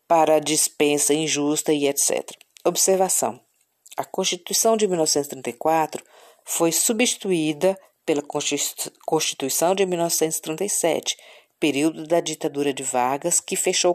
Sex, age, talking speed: female, 50-69, 105 wpm